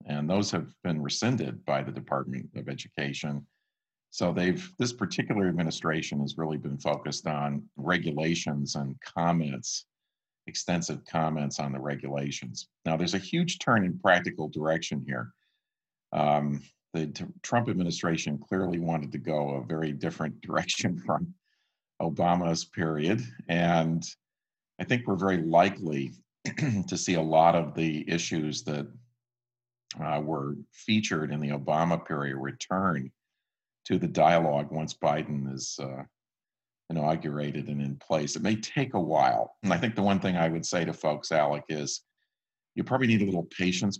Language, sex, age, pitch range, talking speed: English, male, 50-69, 75-95 Hz, 150 wpm